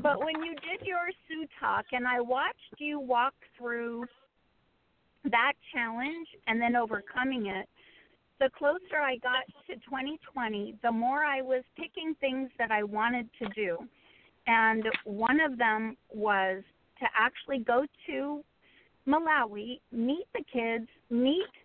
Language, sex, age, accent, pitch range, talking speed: English, female, 40-59, American, 230-285 Hz, 140 wpm